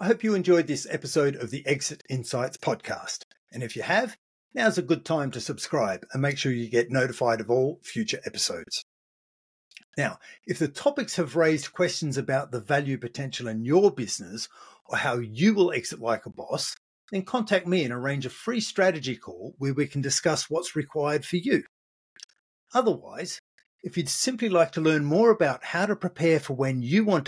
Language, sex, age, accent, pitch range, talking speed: English, male, 50-69, Australian, 140-185 Hz, 190 wpm